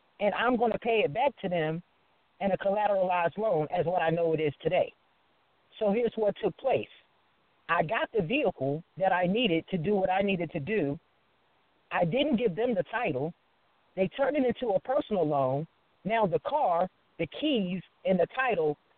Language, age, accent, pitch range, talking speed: English, 40-59, American, 175-225 Hz, 190 wpm